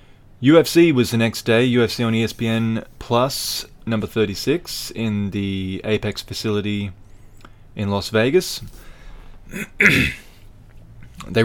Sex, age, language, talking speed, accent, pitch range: male, 20-39, English, 100 wpm, Australian, 95-115 Hz